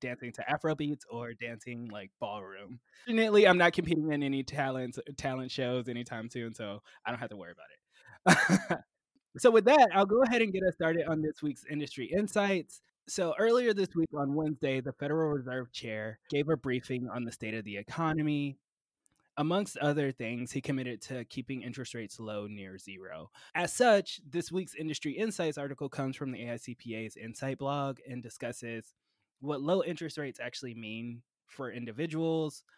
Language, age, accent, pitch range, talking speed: English, 20-39, American, 115-150 Hz, 175 wpm